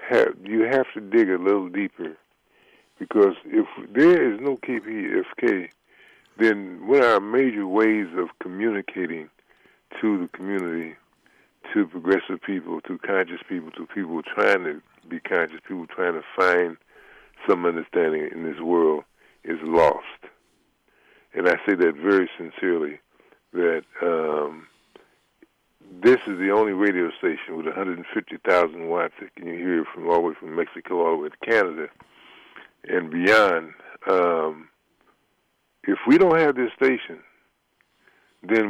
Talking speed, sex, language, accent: 140 wpm, female, English, American